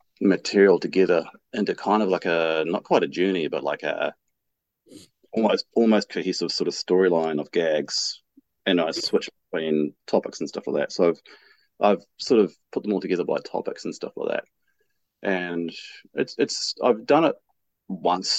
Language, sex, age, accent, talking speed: English, male, 30-49, Australian, 175 wpm